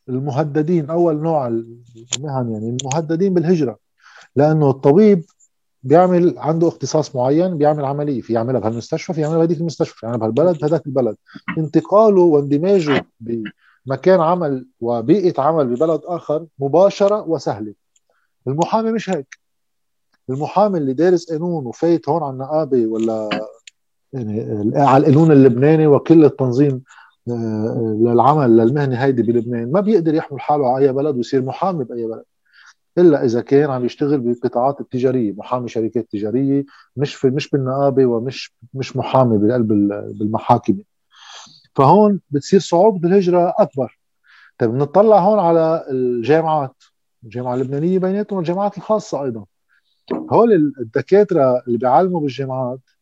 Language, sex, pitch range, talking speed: Arabic, male, 120-165 Hz, 125 wpm